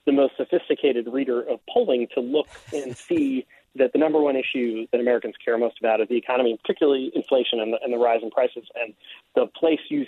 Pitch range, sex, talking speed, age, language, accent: 120-155 Hz, male, 215 wpm, 40-59, English, American